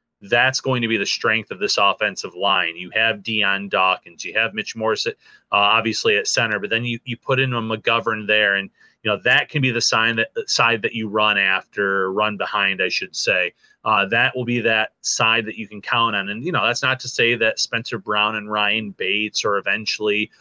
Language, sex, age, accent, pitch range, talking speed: English, male, 30-49, American, 105-125 Hz, 225 wpm